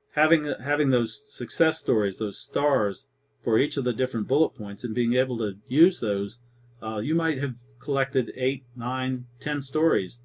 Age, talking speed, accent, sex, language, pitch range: 40-59, 170 wpm, American, male, English, 115-135 Hz